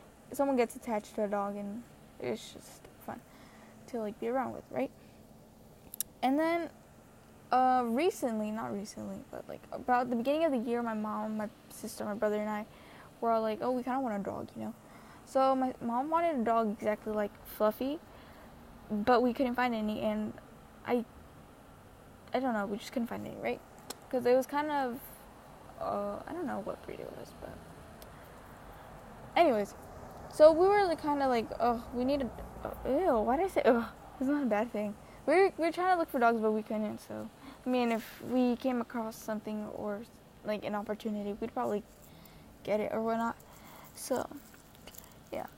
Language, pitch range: English, 215-270 Hz